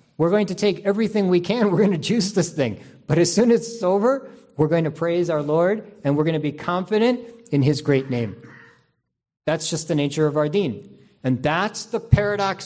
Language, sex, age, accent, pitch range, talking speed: English, male, 40-59, American, 140-210 Hz, 220 wpm